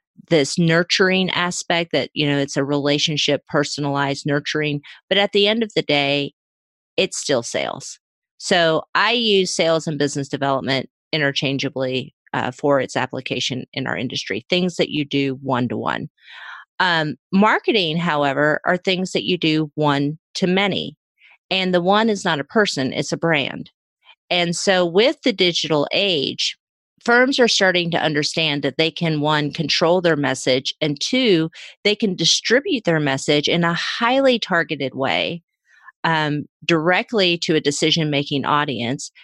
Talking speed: 145 wpm